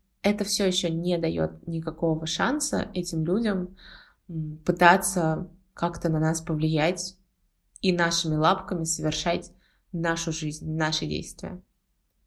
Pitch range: 160-185 Hz